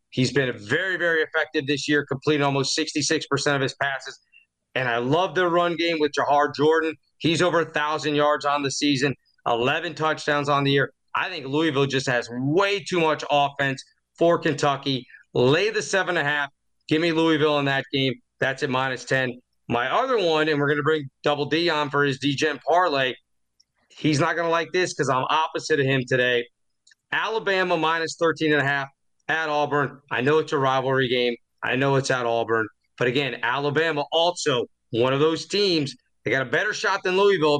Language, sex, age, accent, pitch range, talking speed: English, male, 40-59, American, 140-170 Hz, 190 wpm